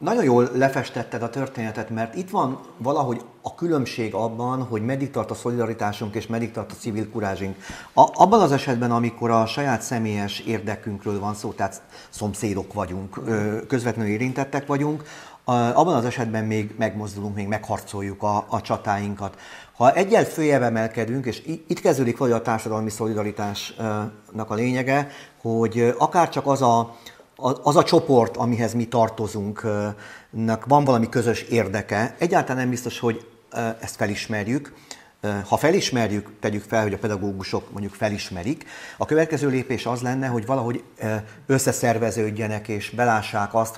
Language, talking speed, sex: Hungarian, 140 wpm, male